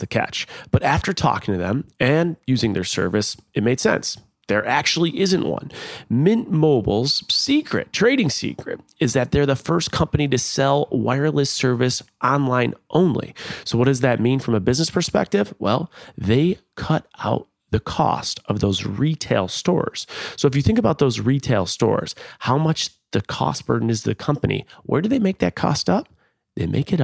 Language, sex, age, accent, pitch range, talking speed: English, male, 30-49, American, 115-160 Hz, 180 wpm